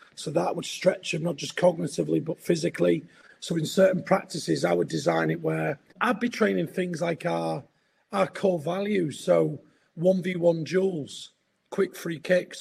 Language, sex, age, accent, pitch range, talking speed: English, male, 30-49, British, 165-195 Hz, 160 wpm